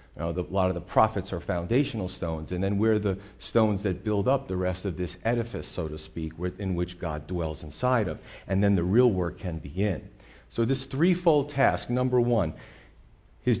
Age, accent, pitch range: 40-59, American, 90-125 Hz